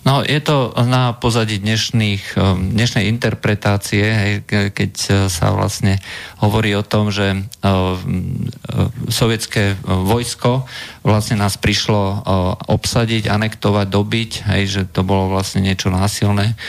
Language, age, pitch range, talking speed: Slovak, 50-69, 100-120 Hz, 115 wpm